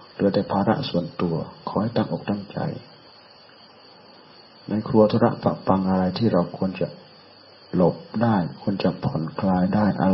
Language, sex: Thai, male